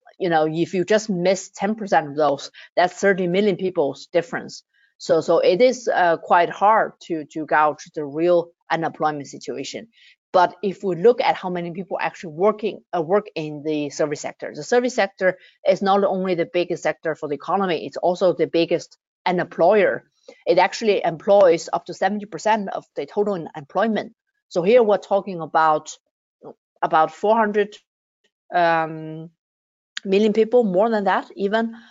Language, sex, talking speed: English, female, 160 wpm